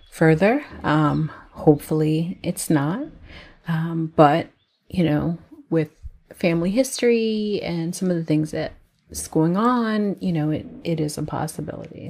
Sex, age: female, 30-49